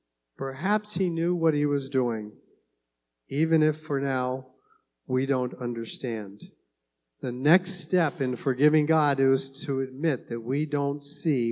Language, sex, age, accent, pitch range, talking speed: English, male, 50-69, American, 120-180 Hz, 140 wpm